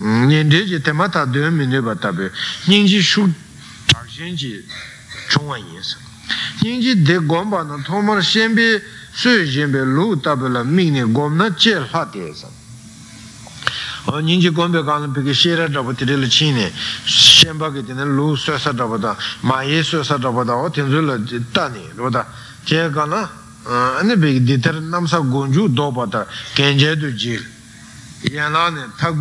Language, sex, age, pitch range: Italian, male, 60-79, 130-180 Hz